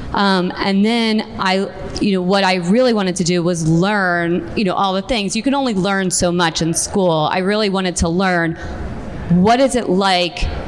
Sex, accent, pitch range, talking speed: female, American, 170-205 Hz, 200 wpm